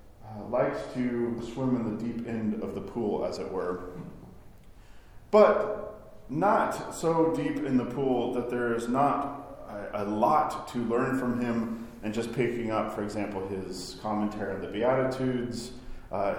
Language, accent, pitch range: English, American, 110-130 Hz